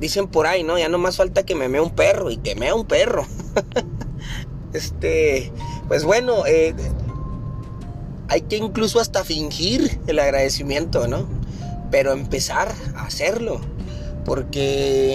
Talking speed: 140 wpm